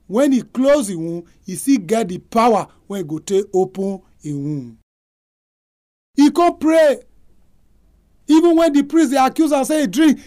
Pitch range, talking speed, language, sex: 195-280 Hz, 165 wpm, English, male